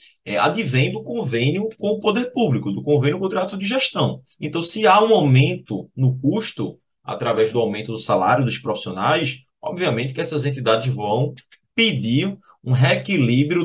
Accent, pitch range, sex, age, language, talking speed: Brazilian, 125-165 Hz, male, 20-39, Portuguese, 160 wpm